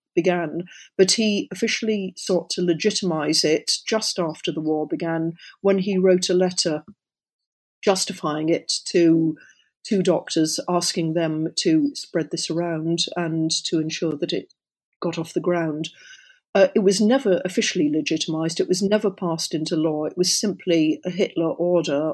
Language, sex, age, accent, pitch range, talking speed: English, female, 40-59, British, 160-190 Hz, 150 wpm